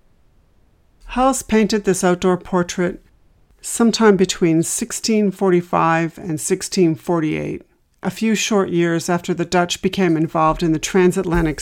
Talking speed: 115 wpm